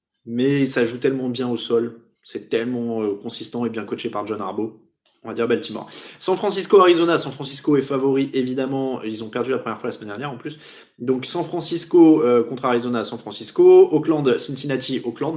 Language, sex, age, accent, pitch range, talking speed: French, male, 20-39, French, 120-170 Hz, 195 wpm